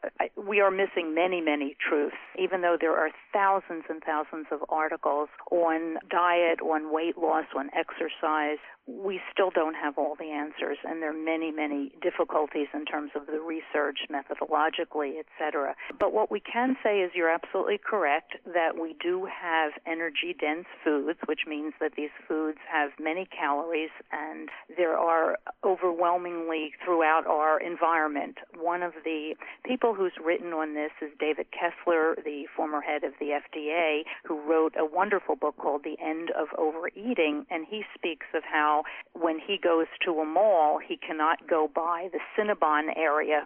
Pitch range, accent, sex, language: 155-180 Hz, American, female, English